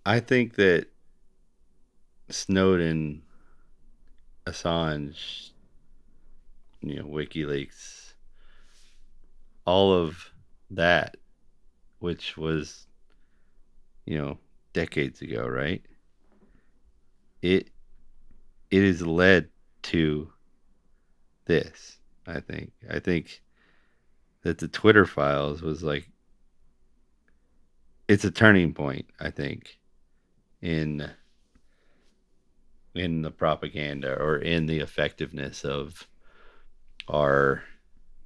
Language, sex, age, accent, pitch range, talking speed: English, male, 40-59, American, 75-95 Hz, 80 wpm